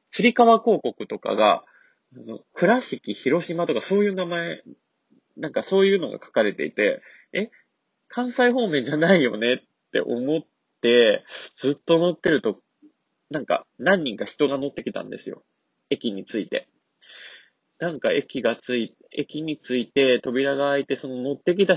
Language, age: Japanese, 20-39